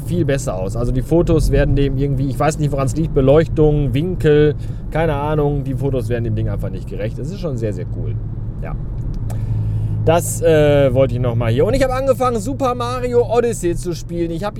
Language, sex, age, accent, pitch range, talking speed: German, male, 30-49, German, 115-155 Hz, 215 wpm